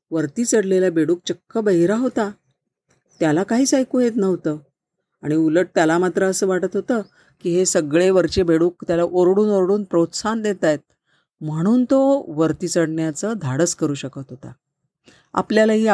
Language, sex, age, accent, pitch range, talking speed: Marathi, female, 40-59, native, 160-195 Hz, 145 wpm